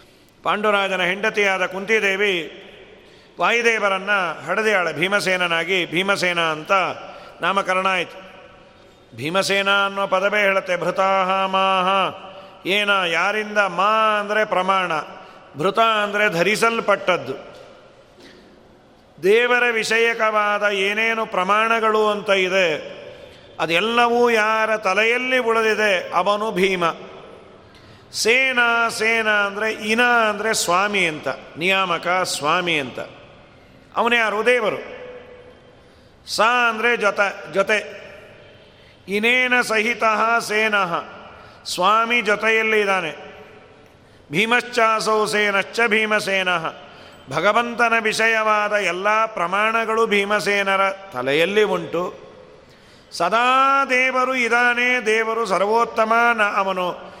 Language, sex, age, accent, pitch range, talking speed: Kannada, male, 40-59, native, 190-225 Hz, 80 wpm